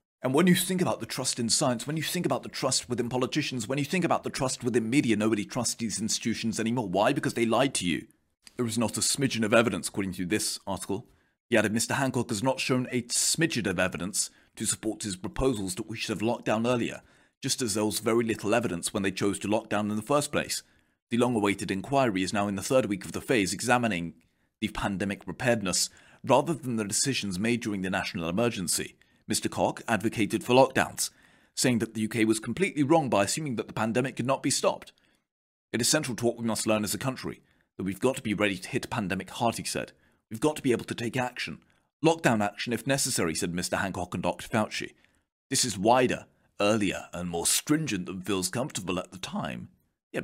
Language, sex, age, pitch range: Japanese, male, 30-49, 105-130 Hz